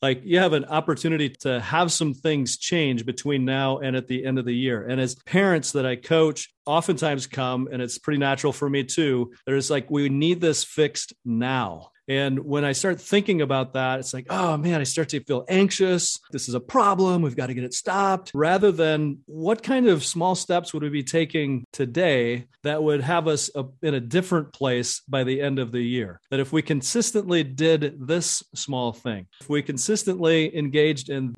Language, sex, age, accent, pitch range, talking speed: English, male, 40-59, American, 125-155 Hz, 205 wpm